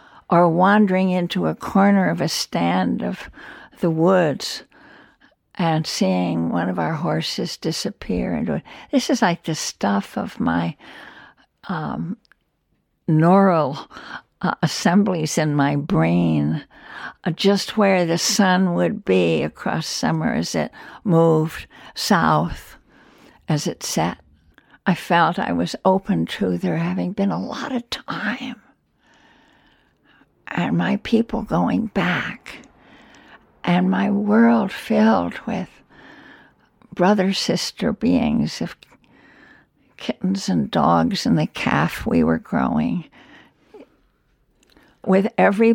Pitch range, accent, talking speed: 165-215 Hz, American, 115 wpm